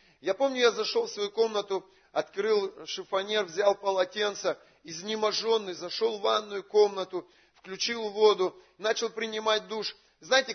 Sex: male